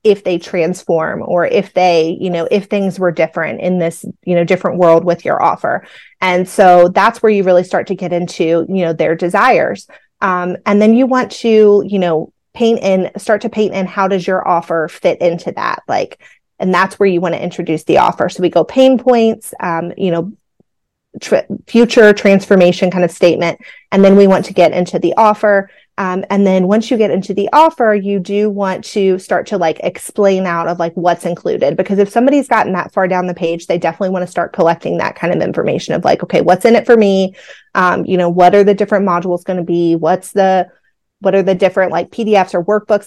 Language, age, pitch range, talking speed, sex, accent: English, 30-49, 175-205 Hz, 220 wpm, female, American